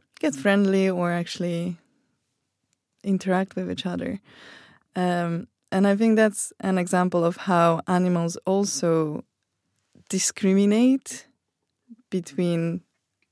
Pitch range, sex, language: 170-200 Hz, female, Swedish